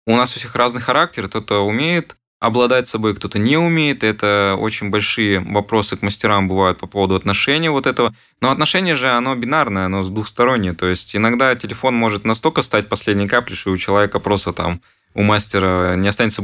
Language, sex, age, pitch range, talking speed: Russian, male, 20-39, 100-120 Hz, 185 wpm